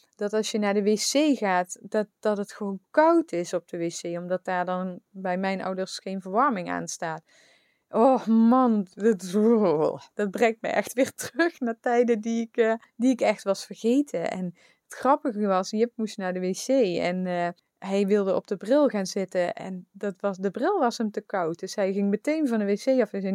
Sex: female